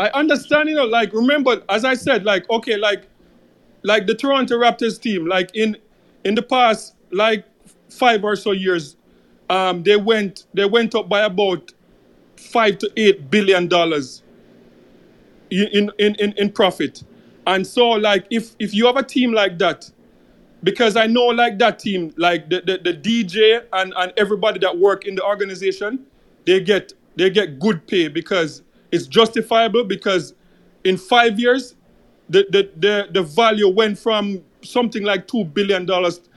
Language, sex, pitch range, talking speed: English, male, 190-230 Hz, 165 wpm